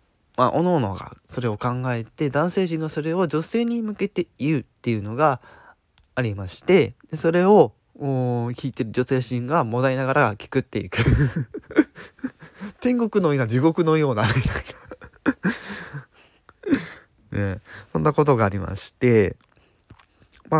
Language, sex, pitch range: Japanese, male, 105-155 Hz